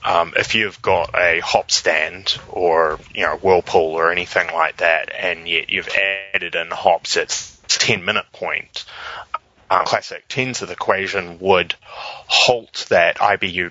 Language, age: English, 20-39